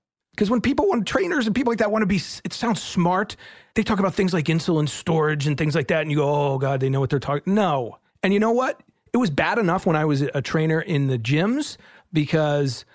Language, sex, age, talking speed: English, male, 40-59, 255 wpm